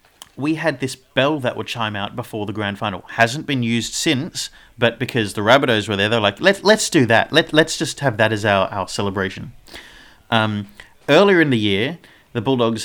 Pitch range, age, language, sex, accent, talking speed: 105-130 Hz, 30-49, English, male, Australian, 205 wpm